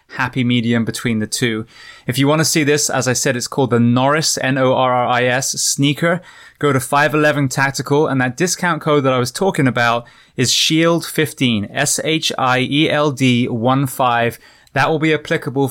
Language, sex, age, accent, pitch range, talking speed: English, male, 20-39, British, 125-155 Hz, 165 wpm